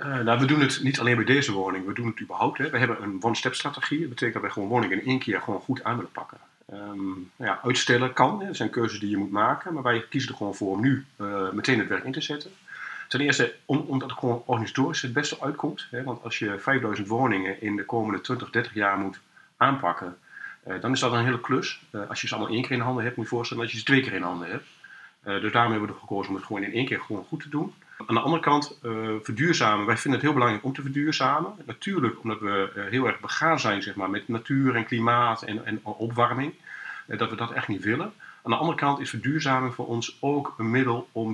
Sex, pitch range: male, 105-130 Hz